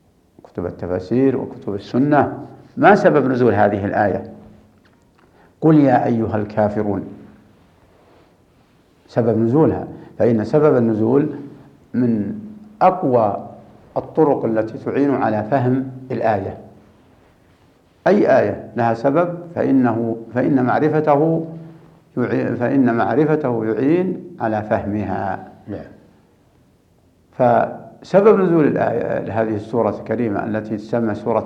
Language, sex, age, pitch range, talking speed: Arabic, male, 60-79, 110-140 Hz, 95 wpm